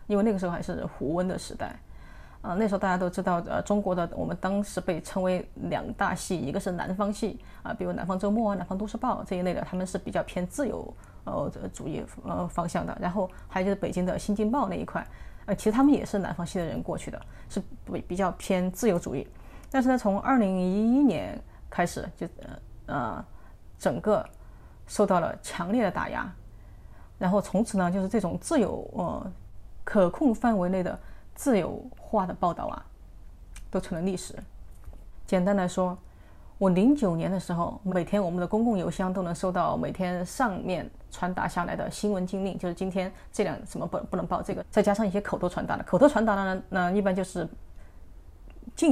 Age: 20-39